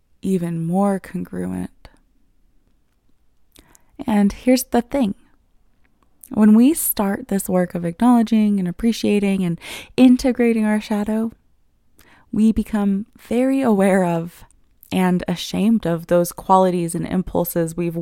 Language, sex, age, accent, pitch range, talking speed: English, female, 20-39, American, 180-220 Hz, 110 wpm